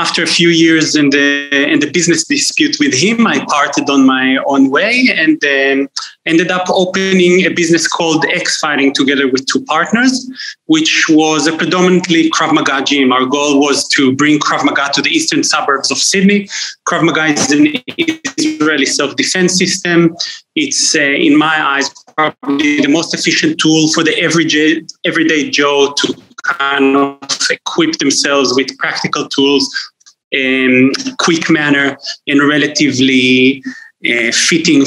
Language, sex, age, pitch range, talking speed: English, male, 30-49, 140-190 Hz, 155 wpm